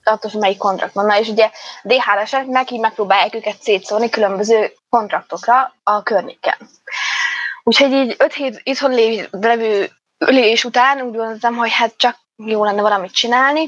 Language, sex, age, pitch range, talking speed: Hungarian, female, 20-39, 200-235 Hz, 130 wpm